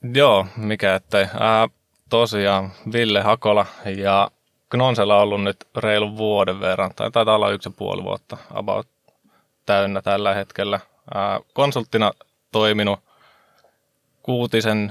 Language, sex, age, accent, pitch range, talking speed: Finnish, male, 20-39, native, 100-110 Hz, 115 wpm